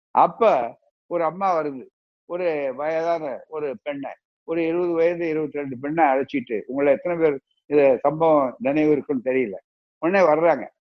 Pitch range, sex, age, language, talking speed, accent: 125-150 Hz, male, 60-79, Tamil, 140 wpm, native